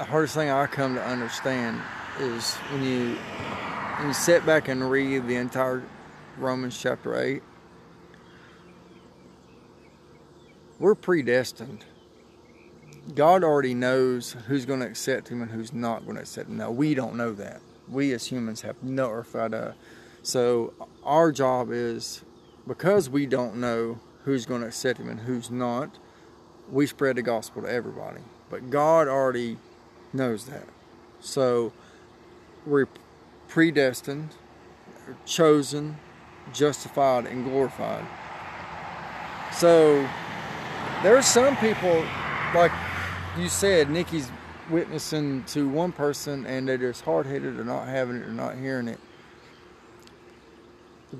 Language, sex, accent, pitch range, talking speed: English, male, American, 120-150 Hz, 130 wpm